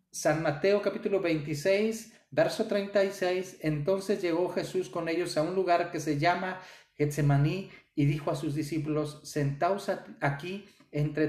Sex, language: male, Spanish